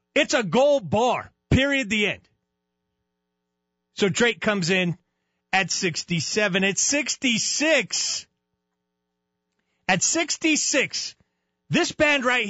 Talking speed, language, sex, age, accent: 95 wpm, English, male, 40-59, American